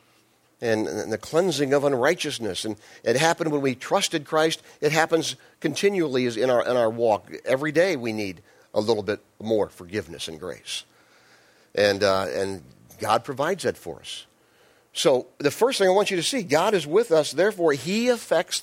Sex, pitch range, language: male, 110-185 Hz, English